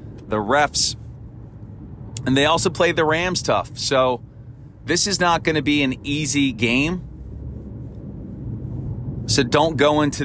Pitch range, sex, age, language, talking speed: 115-135 Hz, male, 30-49, English, 135 wpm